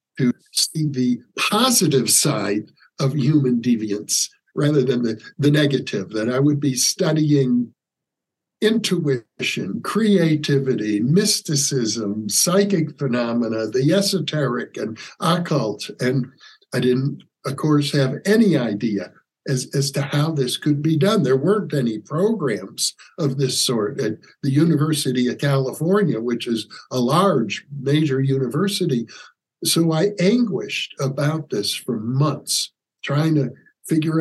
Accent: American